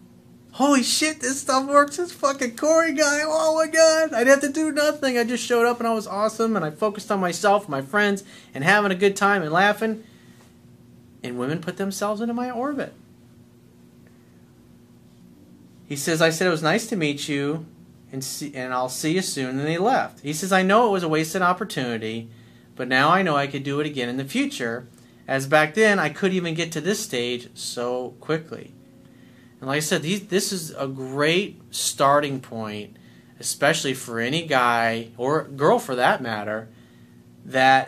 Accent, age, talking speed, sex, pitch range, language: American, 30-49, 195 wpm, male, 125-195 Hz, English